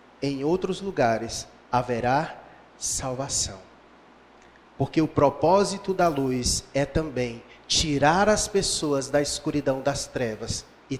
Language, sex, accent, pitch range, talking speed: Portuguese, male, Brazilian, 130-175 Hz, 110 wpm